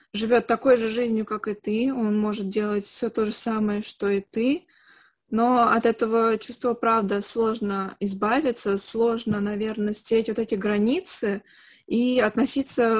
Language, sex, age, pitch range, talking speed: Russian, female, 20-39, 200-235 Hz, 150 wpm